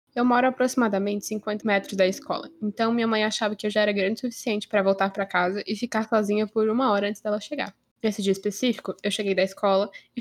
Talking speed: 235 wpm